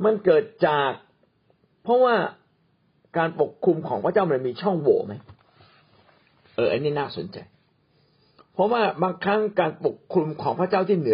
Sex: male